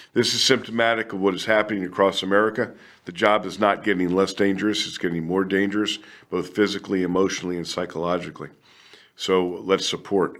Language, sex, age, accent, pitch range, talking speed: English, male, 50-69, American, 100-130 Hz, 160 wpm